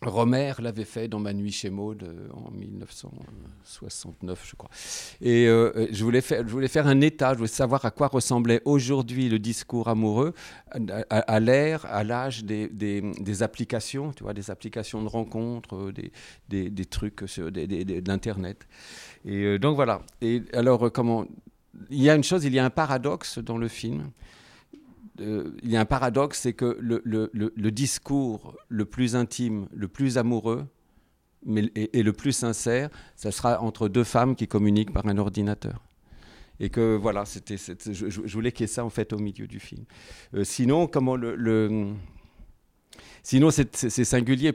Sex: male